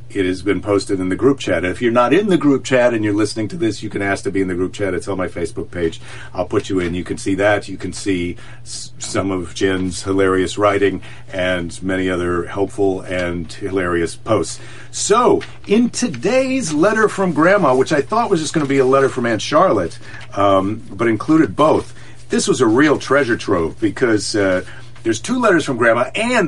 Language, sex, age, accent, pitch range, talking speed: English, male, 50-69, American, 90-120 Hz, 215 wpm